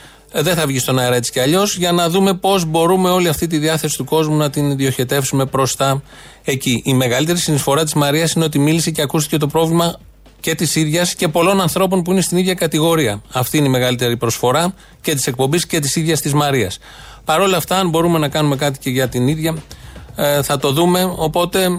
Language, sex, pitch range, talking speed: Greek, male, 130-165 Hz, 210 wpm